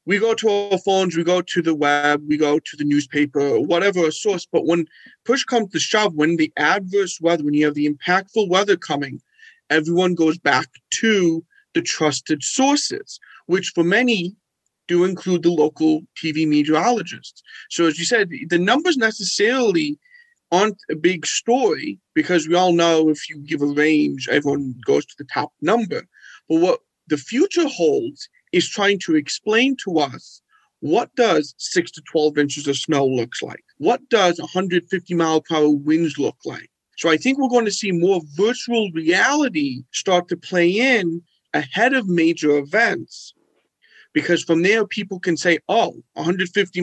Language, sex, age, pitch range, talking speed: English, male, 40-59, 155-225 Hz, 170 wpm